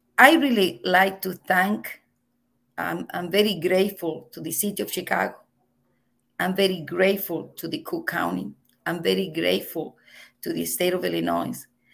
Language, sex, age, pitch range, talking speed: English, female, 40-59, 180-220 Hz, 145 wpm